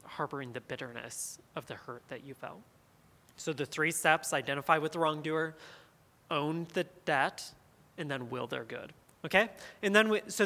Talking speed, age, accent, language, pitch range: 165 wpm, 30-49, American, English, 140-175 Hz